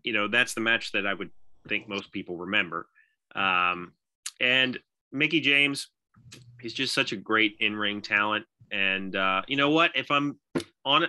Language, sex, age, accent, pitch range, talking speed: English, male, 30-49, American, 105-140 Hz, 170 wpm